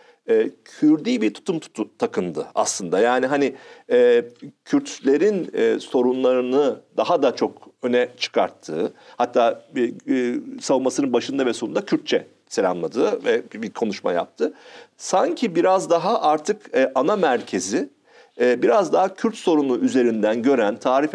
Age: 50-69